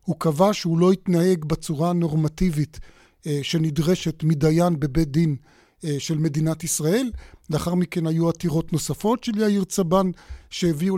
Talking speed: 125 wpm